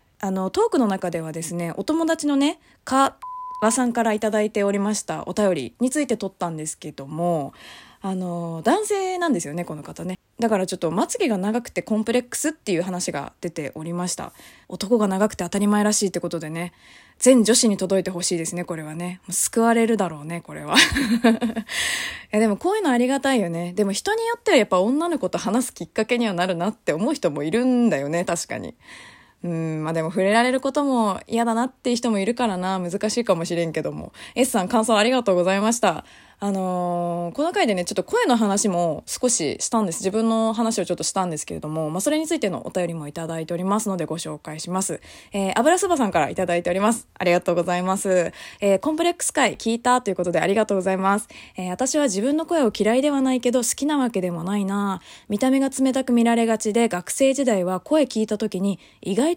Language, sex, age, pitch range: Japanese, female, 20-39, 180-245 Hz